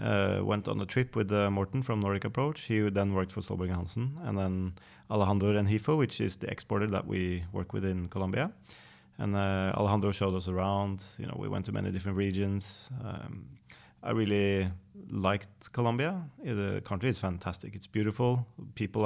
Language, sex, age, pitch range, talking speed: English, male, 30-49, 95-115 Hz, 180 wpm